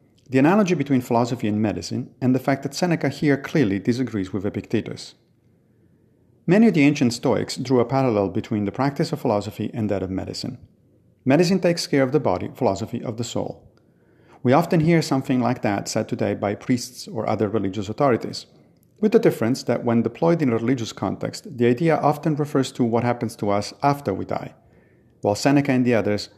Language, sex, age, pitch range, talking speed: English, male, 40-59, 105-140 Hz, 190 wpm